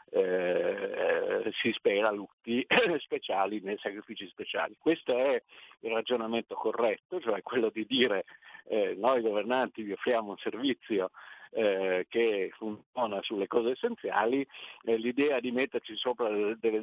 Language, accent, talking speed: Italian, native, 130 wpm